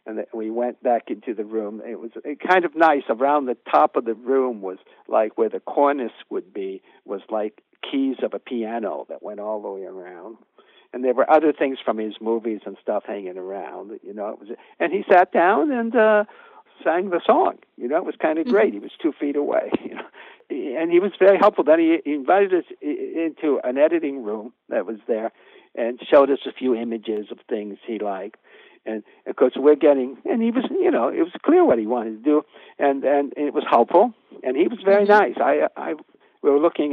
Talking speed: 220 wpm